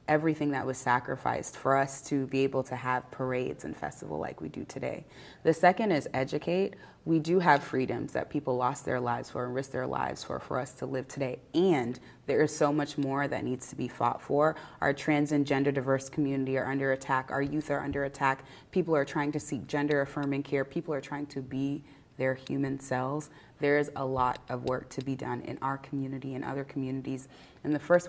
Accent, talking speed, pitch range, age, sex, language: American, 220 wpm, 130-145 Hz, 30-49, female, English